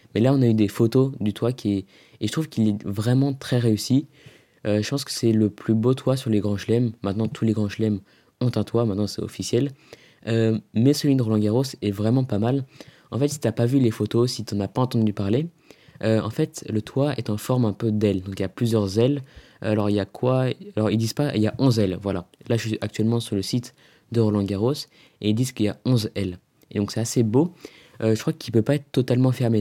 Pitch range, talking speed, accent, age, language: 105-130 Hz, 270 wpm, French, 20-39, French